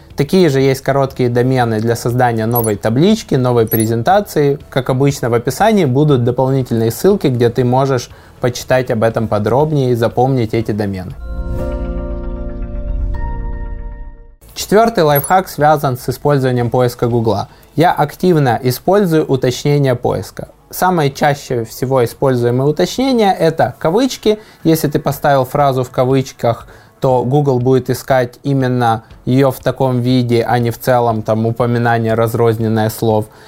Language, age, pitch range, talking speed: Russian, 20-39, 115-140 Hz, 130 wpm